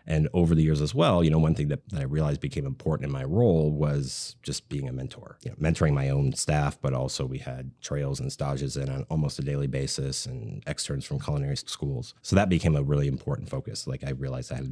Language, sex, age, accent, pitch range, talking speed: English, male, 30-49, American, 70-95 Hz, 245 wpm